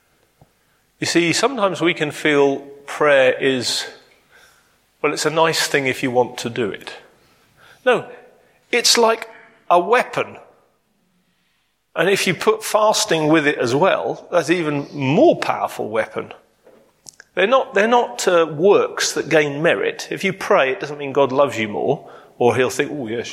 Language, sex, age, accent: English, male, 40-59, British